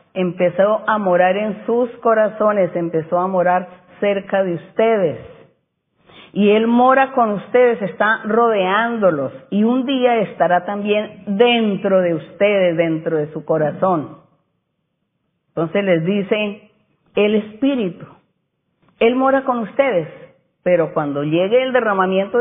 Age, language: 40-59, Spanish